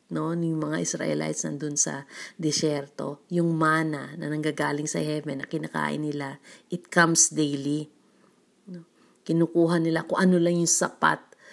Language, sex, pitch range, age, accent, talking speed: Filipino, female, 150-185 Hz, 40-59, native, 140 wpm